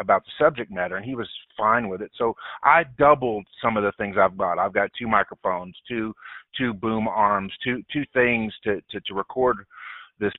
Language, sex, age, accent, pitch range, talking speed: English, male, 50-69, American, 105-135 Hz, 200 wpm